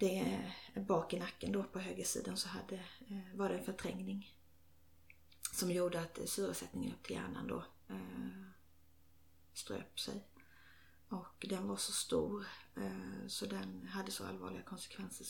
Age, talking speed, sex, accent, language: 30-49, 135 wpm, female, native, Swedish